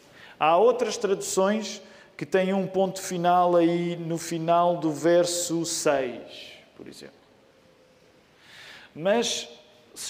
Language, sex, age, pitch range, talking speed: Portuguese, male, 40-59, 170-225 Hz, 105 wpm